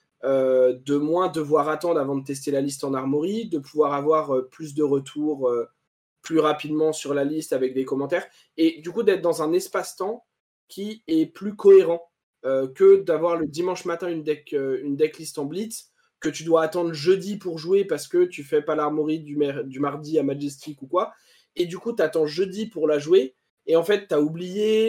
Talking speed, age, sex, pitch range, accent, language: 210 wpm, 20-39, male, 145-190 Hz, French, French